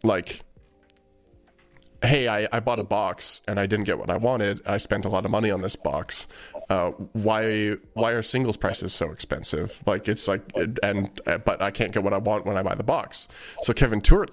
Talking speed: 210 wpm